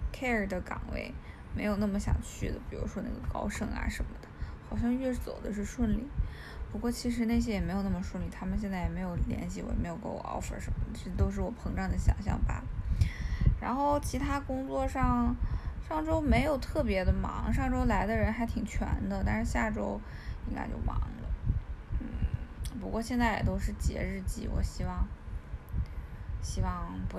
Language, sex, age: Chinese, female, 20-39